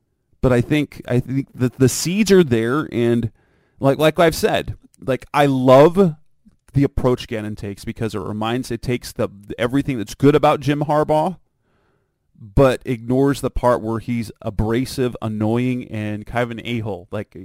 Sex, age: male, 30-49